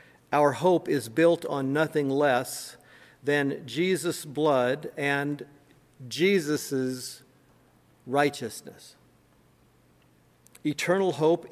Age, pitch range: 50-69, 125-160 Hz